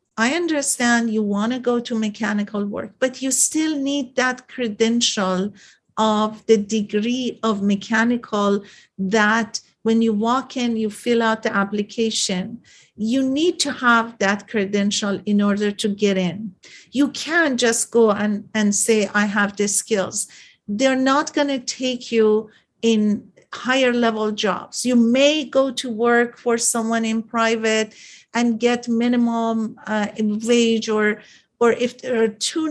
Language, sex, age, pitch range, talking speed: English, female, 50-69, 210-245 Hz, 150 wpm